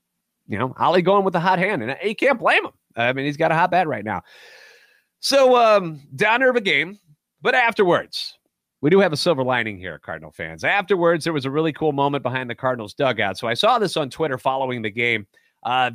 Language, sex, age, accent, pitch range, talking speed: English, male, 30-49, American, 140-190 Hz, 225 wpm